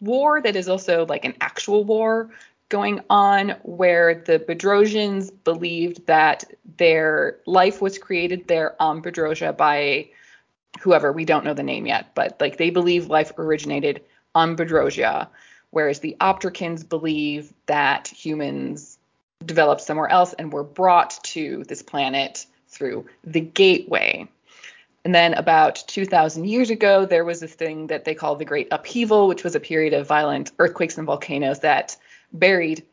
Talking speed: 150 wpm